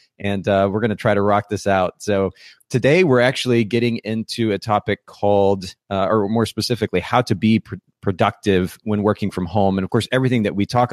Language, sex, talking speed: English, male, 210 wpm